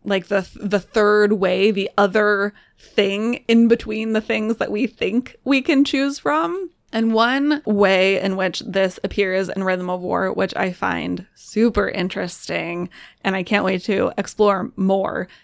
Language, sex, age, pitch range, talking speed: English, female, 20-39, 190-235 Hz, 165 wpm